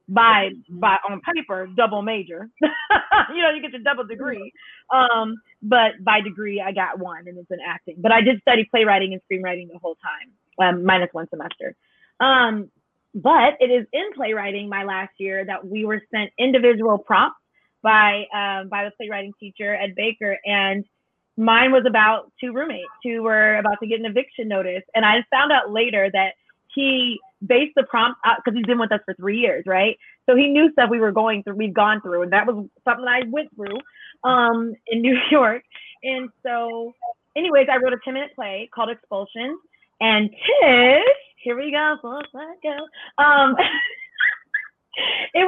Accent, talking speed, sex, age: American, 180 wpm, female, 30-49